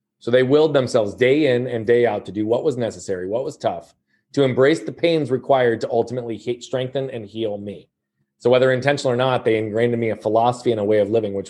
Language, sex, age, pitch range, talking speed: English, male, 30-49, 115-135 Hz, 235 wpm